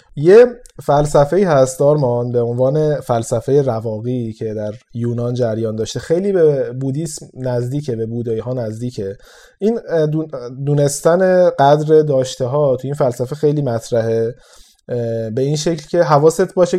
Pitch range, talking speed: 125-165 Hz, 130 wpm